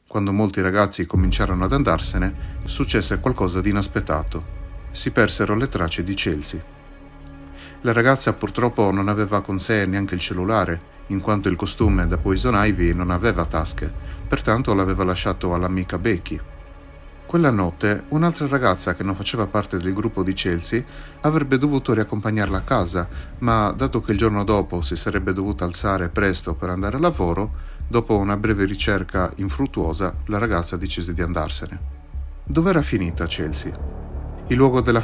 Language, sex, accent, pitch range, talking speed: Italian, male, native, 85-110 Hz, 150 wpm